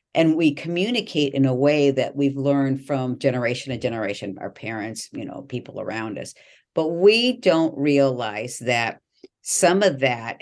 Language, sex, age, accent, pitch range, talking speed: English, female, 50-69, American, 125-150 Hz, 160 wpm